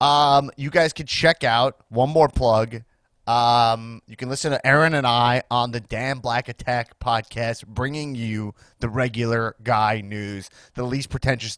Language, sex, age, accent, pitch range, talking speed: English, male, 30-49, American, 120-145 Hz, 165 wpm